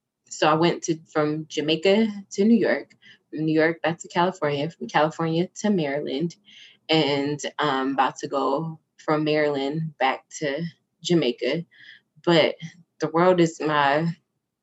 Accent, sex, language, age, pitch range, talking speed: American, female, English, 20-39, 150-175 Hz, 140 wpm